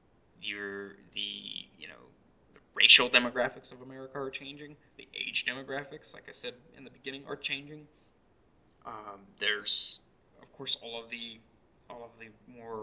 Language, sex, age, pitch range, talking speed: English, male, 20-39, 105-135 Hz, 155 wpm